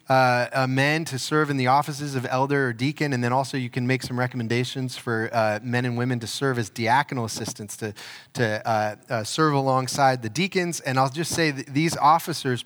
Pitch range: 125-155 Hz